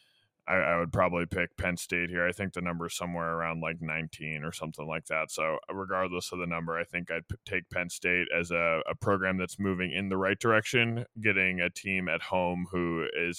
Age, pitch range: 20-39, 100-115 Hz